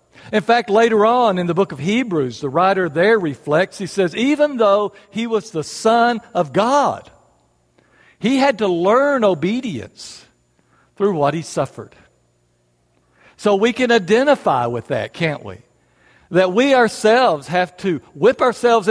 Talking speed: 150 wpm